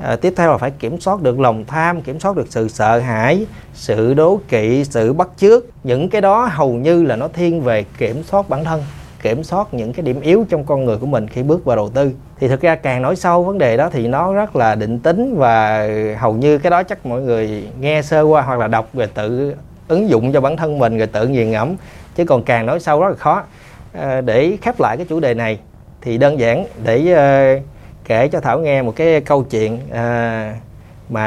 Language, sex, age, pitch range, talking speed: Vietnamese, male, 20-39, 115-160 Hz, 230 wpm